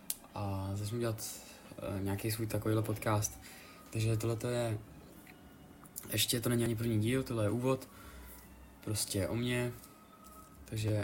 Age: 20-39